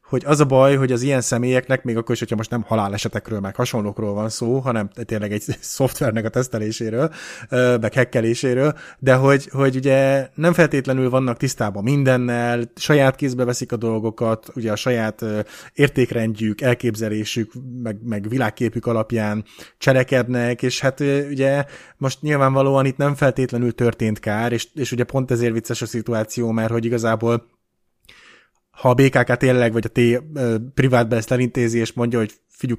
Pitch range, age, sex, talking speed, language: 115-130 Hz, 20-39, male, 155 wpm, Hungarian